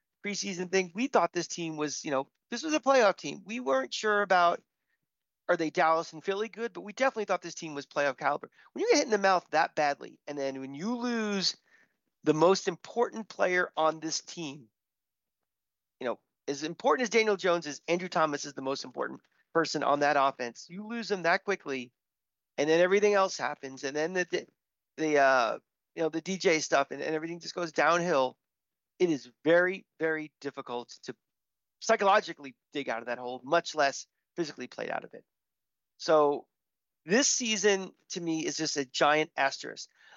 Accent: American